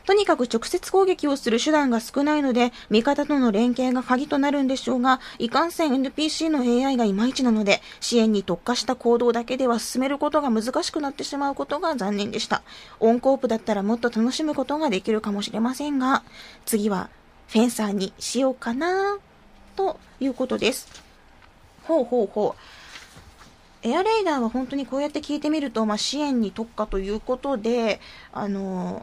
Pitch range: 220-280 Hz